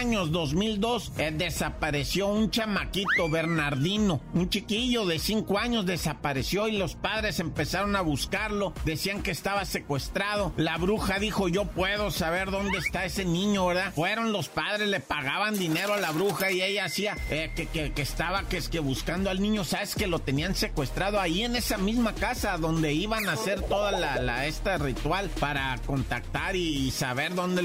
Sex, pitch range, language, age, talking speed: male, 150-205 Hz, Spanish, 50-69, 180 wpm